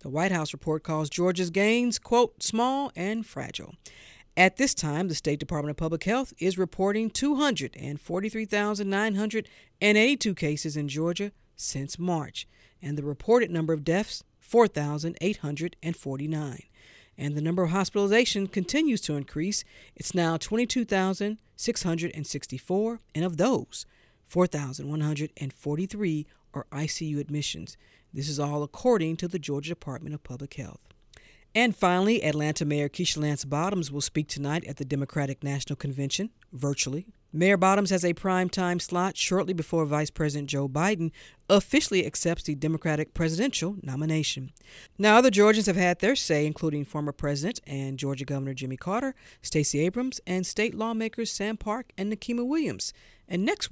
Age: 50-69